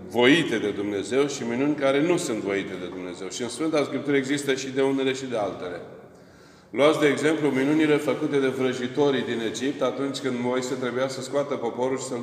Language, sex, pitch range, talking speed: Romanian, male, 120-140 Hz, 195 wpm